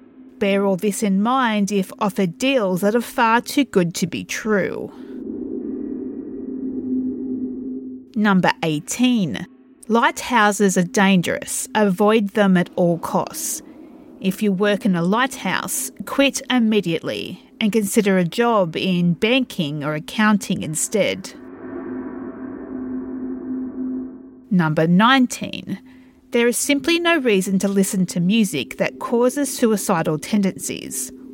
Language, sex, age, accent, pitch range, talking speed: English, female, 40-59, Australian, 195-265 Hz, 110 wpm